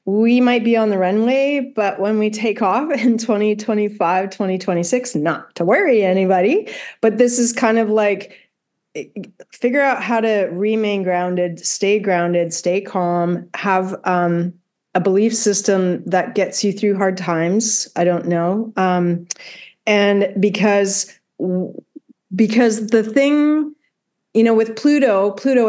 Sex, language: female, English